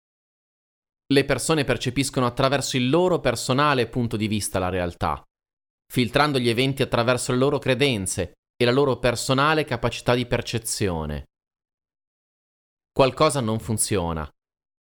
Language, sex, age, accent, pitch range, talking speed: Italian, male, 30-49, native, 105-140 Hz, 115 wpm